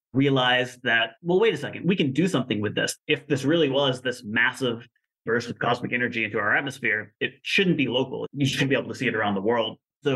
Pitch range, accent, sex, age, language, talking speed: 110-135 Hz, American, male, 30-49, English, 235 wpm